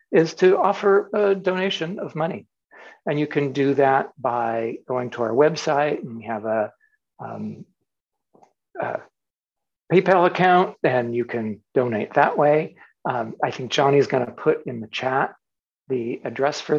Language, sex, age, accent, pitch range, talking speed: English, male, 60-79, American, 130-180 Hz, 160 wpm